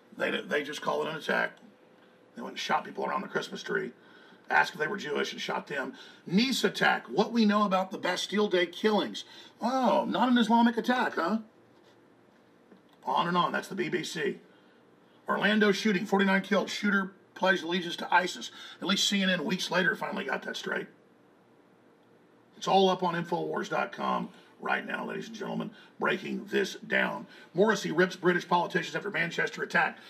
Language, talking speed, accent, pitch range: English, 165 wpm, American, 180-215 Hz